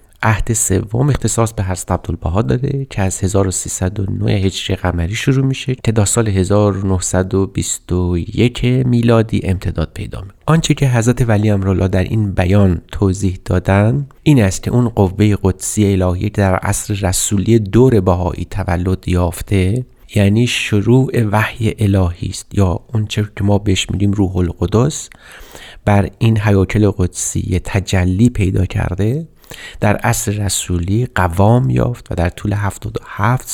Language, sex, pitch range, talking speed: Persian, male, 95-115 Hz, 130 wpm